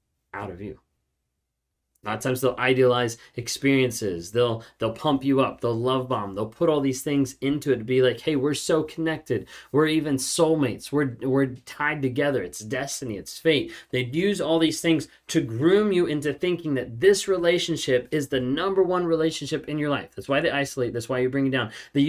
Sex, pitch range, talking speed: male, 115-155 Hz, 205 wpm